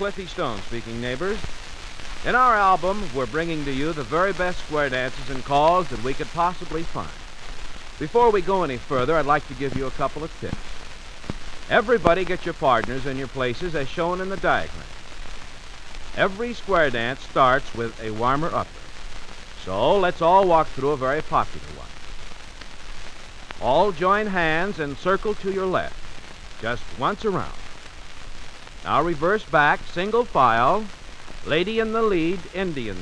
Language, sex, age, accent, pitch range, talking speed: English, male, 60-79, American, 120-190 Hz, 160 wpm